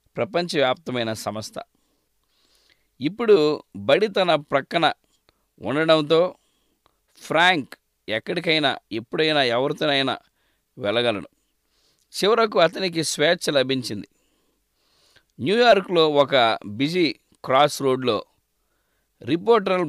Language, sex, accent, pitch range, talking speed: English, male, Indian, 130-180 Hz, 75 wpm